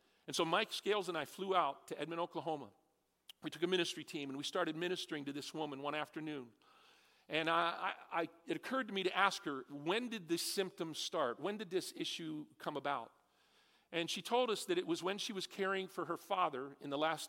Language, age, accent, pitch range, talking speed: English, 50-69, American, 150-200 Hz, 210 wpm